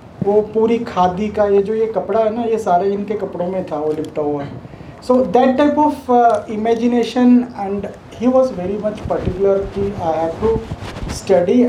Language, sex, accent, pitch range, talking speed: Hindi, male, native, 175-215 Hz, 185 wpm